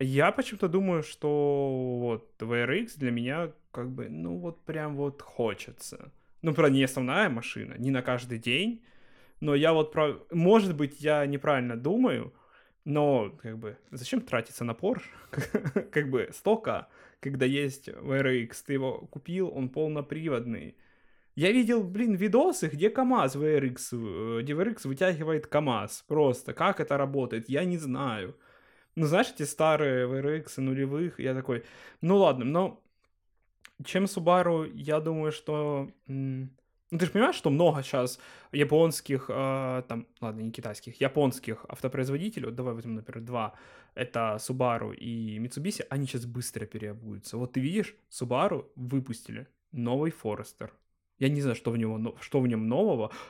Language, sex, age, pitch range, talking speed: Ukrainian, male, 20-39, 120-160 Hz, 145 wpm